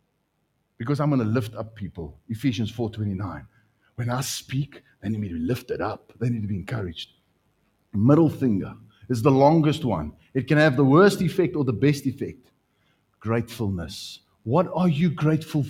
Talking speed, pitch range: 170 wpm, 115-165 Hz